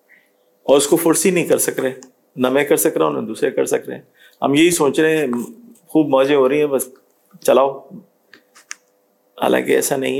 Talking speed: 205 wpm